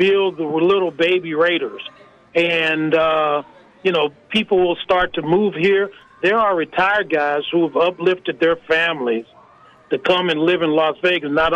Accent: American